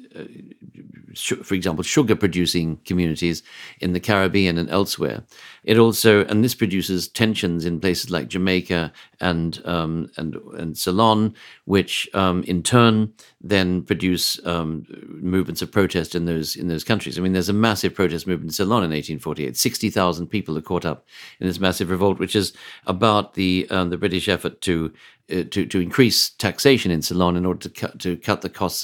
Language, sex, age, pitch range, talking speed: English, male, 50-69, 85-105 Hz, 170 wpm